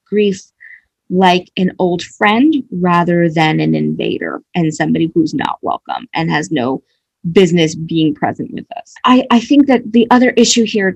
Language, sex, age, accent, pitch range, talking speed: English, female, 20-39, American, 170-205 Hz, 165 wpm